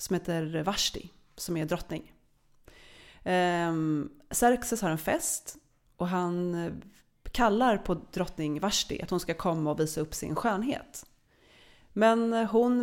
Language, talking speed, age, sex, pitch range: Swedish, 130 wpm, 30-49, female, 160-215 Hz